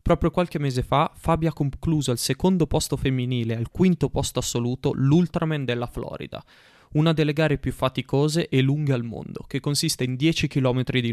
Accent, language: native, Italian